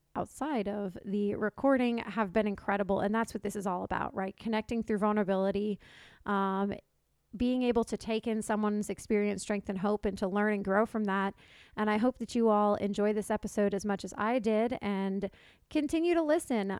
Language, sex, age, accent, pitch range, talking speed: English, female, 30-49, American, 200-230 Hz, 195 wpm